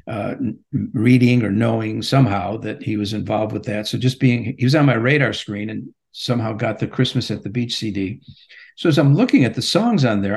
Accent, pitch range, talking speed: American, 110-130 Hz, 220 wpm